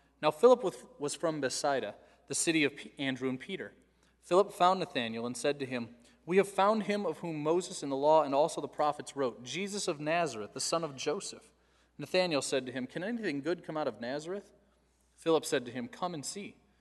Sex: male